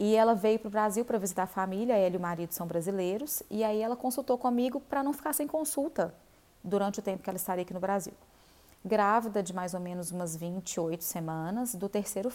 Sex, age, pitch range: female, 20-39, 195-250 Hz